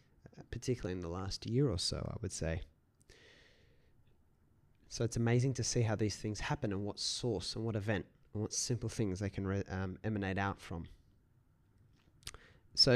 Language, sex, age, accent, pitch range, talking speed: English, male, 20-39, Australian, 95-110 Hz, 165 wpm